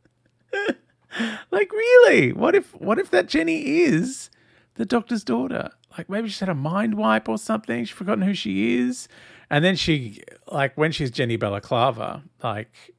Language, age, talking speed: English, 40-59, 160 wpm